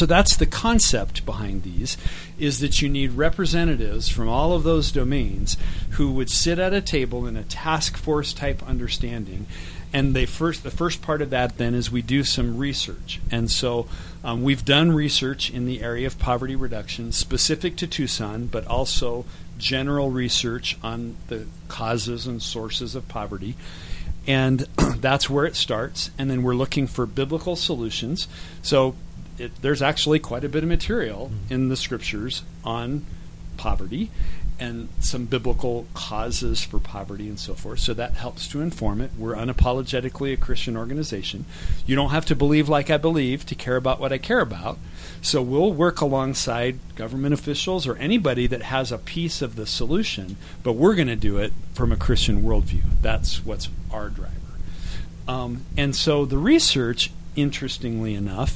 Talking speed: 170 wpm